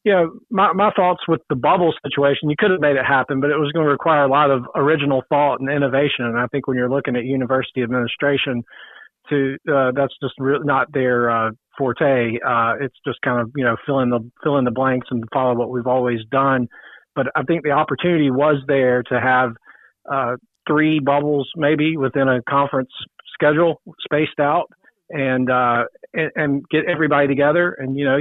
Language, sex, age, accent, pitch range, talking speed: English, male, 40-59, American, 130-155 Hz, 205 wpm